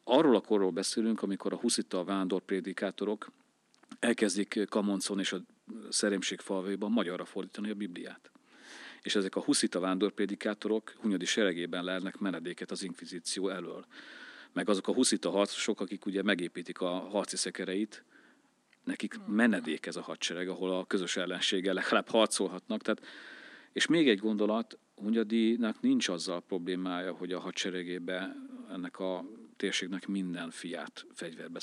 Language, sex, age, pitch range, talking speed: Hungarian, male, 40-59, 90-105 Hz, 130 wpm